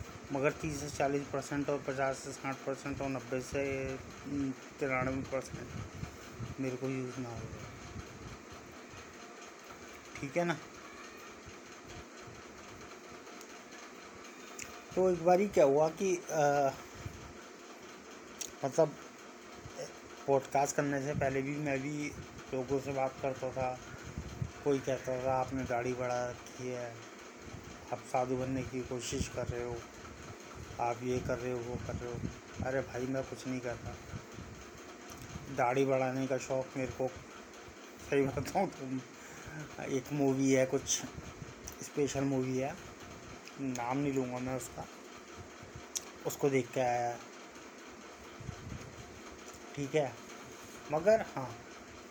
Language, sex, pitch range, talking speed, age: Hindi, male, 120-140 Hz, 120 wpm, 30-49